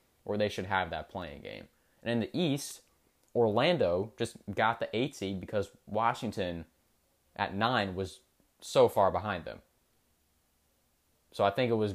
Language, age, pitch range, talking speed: English, 20-39, 85-105 Hz, 155 wpm